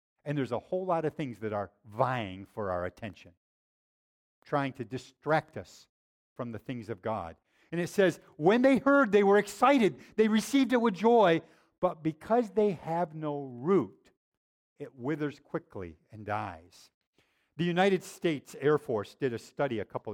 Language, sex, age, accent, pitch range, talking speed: English, male, 50-69, American, 125-195 Hz, 170 wpm